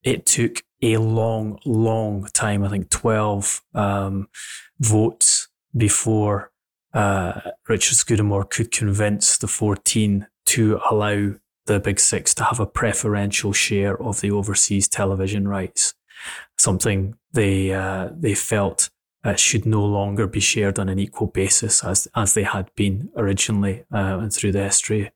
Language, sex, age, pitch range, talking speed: English, male, 20-39, 100-110 Hz, 145 wpm